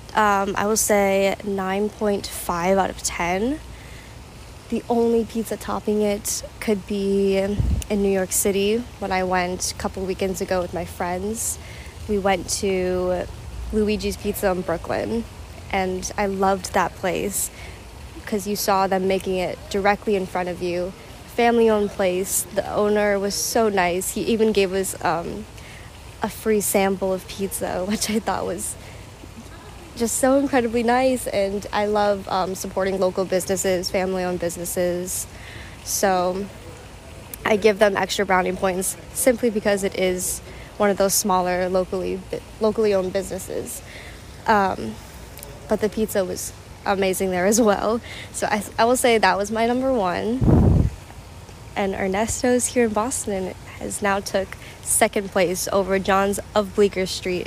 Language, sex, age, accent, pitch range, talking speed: English, female, 20-39, American, 185-210 Hz, 145 wpm